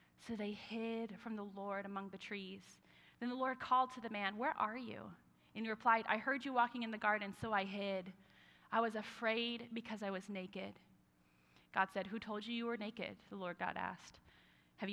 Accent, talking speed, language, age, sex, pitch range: American, 210 wpm, English, 30-49, female, 200-280 Hz